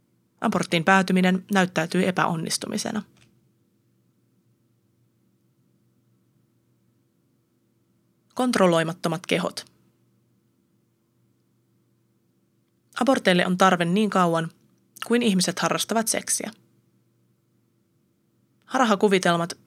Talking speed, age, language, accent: 50 wpm, 20-39, Finnish, native